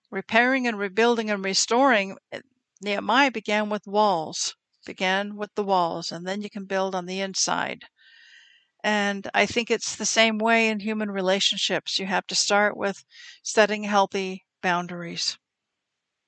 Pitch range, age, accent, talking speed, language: 140-195 Hz, 60-79, American, 145 wpm, English